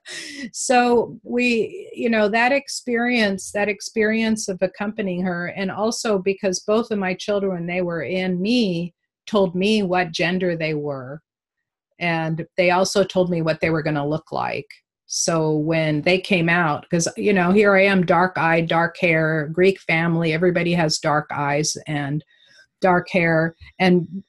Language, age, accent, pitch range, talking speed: English, 40-59, American, 170-215 Hz, 160 wpm